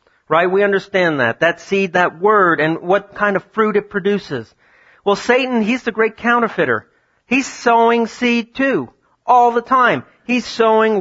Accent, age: American, 40-59